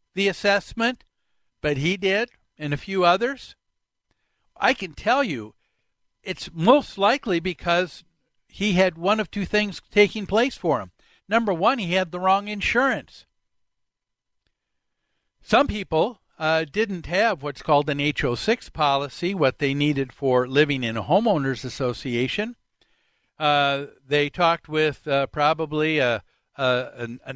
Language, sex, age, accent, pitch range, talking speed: English, male, 60-79, American, 145-195 Hz, 140 wpm